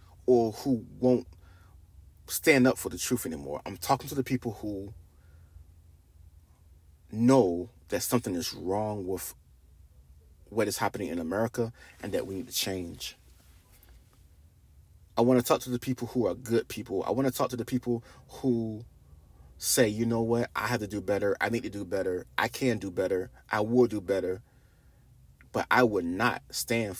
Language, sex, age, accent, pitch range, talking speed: English, male, 30-49, American, 75-115 Hz, 170 wpm